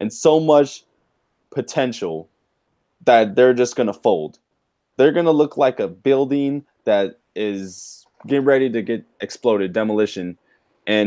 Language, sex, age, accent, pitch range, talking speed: English, male, 20-39, American, 120-155 Hz, 140 wpm